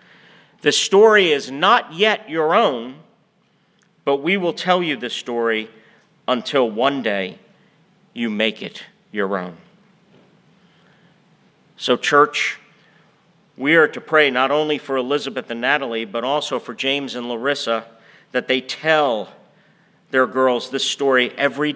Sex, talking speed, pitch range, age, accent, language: male, 130 wpm, 130-185 Hz, 50-69, American, English